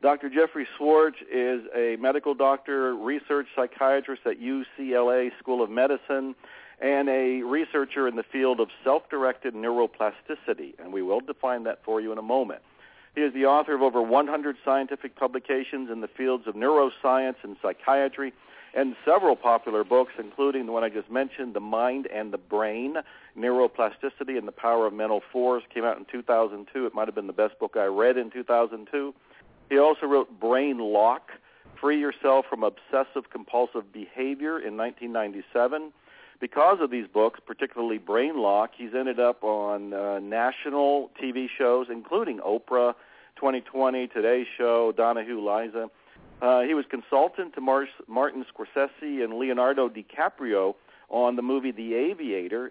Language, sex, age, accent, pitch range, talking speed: English, male, 50-69, American, 115-140 Hz, 155 wpm